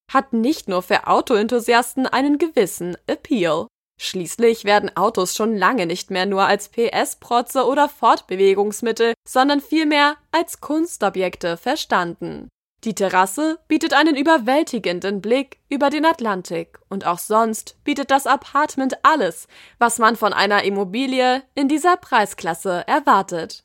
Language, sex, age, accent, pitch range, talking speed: German, female, 20-39, German, 195-285 Hz, 125 wpm